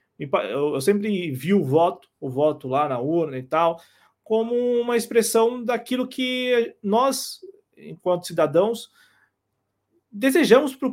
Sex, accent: male, Brazilian